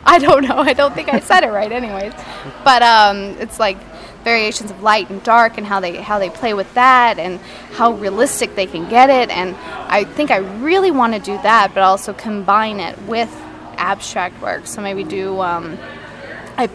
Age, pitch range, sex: 10-29, 195-235 Hz, female